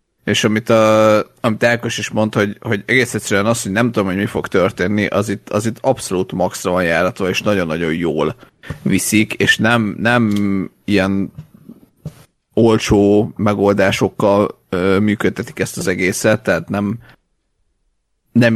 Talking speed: 145 wpm